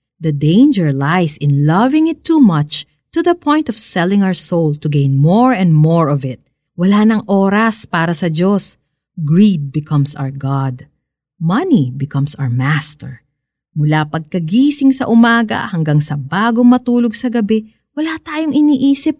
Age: 50-69